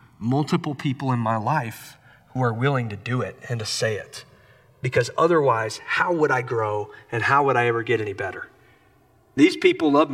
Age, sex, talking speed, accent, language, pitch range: 40-59, male, 190 wpm, American, English, 115-160 Hz